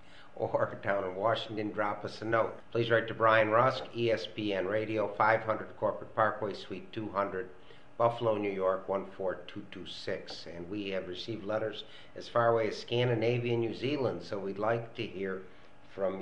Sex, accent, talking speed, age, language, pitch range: male, American, 160 wpm, 60-79, English, 100-120 Hz